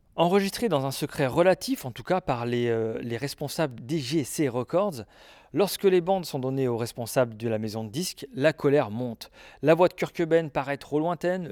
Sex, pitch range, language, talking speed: male, 125-170 Hz, French, 195 wpm